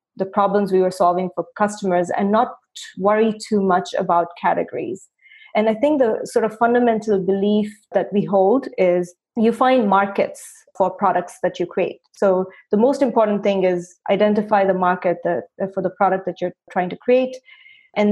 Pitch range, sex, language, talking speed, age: 185-225 Hz, female, English, 175 wpm, 30-49